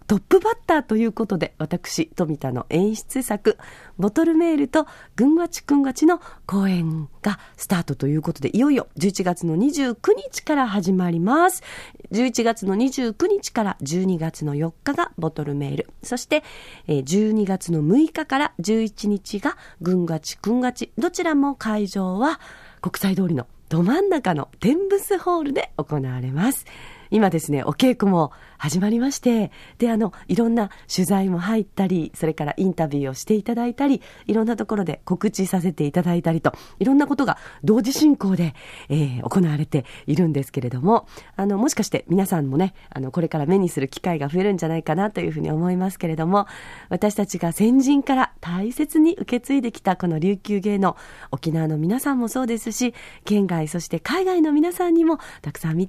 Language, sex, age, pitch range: Japanese, female, 40-59, 165-255 Hz